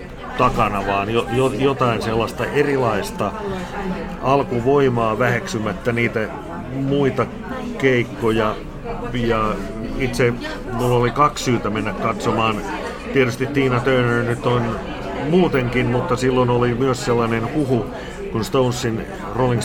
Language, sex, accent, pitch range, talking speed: Finnish, male, native, 110-130 Hz, 105 wpm